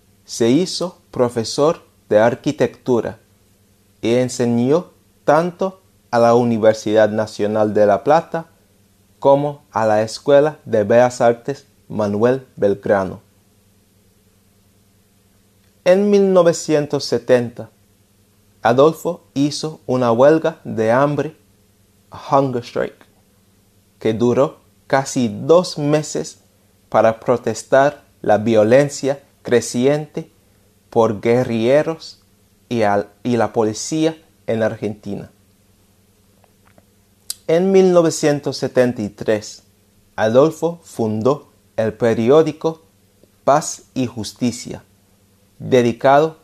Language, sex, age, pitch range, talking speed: Spanish, male, 30-49, 100-135 Hz, 80 wpm